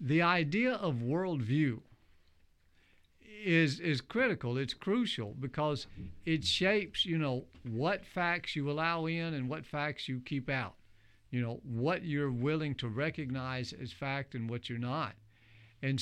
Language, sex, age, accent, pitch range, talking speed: English, male, 50-69, American, 120-155 Hz, 145 wpm